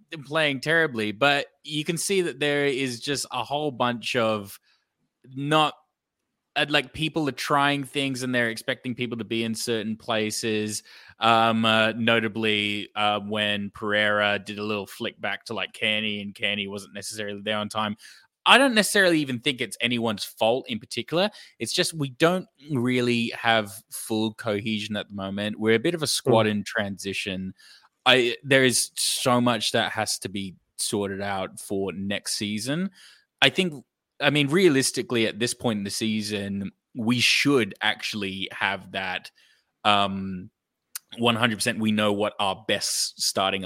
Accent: Australian